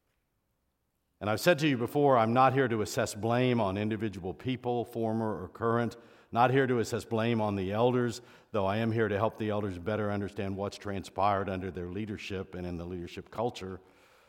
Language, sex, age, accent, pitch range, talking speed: English, male, 60-79, American, 95-130 Hz, 195 wpm